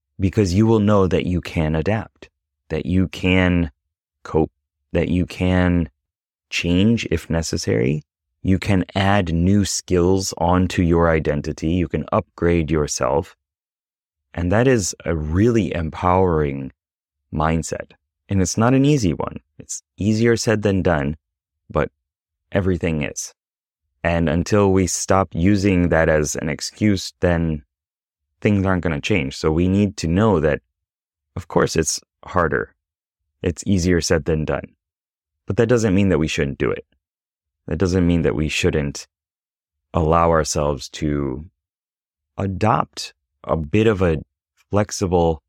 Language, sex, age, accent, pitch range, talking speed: English, male, 30-49, American, 80-100 Hz, 140 wpm